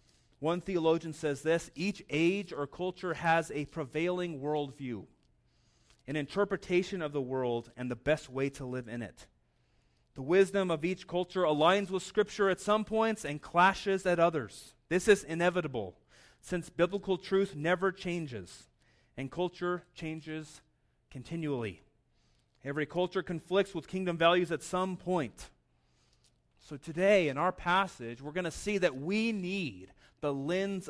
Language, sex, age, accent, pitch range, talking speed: English, male, 30-49, American, 130-180 Hz, 145 wpm